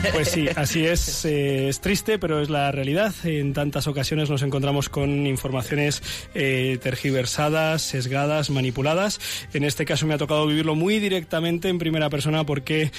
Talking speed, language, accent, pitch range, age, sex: 160 wpm, Spanish, Spanish, 130-150 Hz, 20-39, male